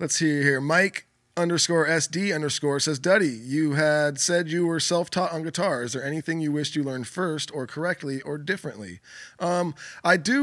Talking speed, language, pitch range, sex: 185 wpm, English, 130-160 Hz, male